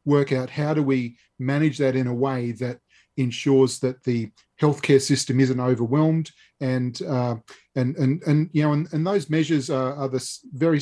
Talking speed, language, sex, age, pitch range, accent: 175 wpm, English, male, 30-49, 125-145 Hz, Australian